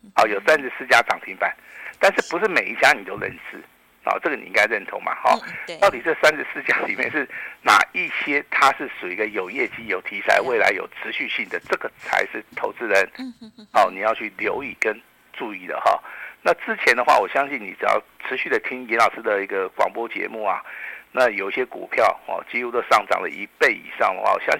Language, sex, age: Chinese, male, 50-69